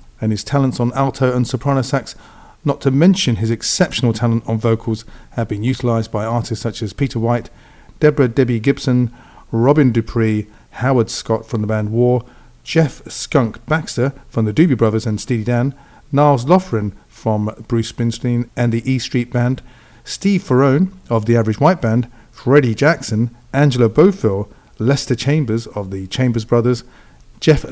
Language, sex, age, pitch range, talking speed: English, male, 40-59, 115-135 Hz, 160 wpm